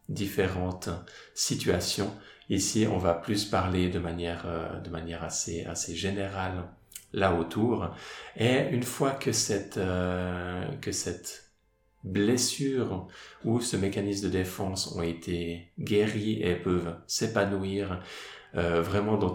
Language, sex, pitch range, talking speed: French, male, 90-110 Hz, 125 wpm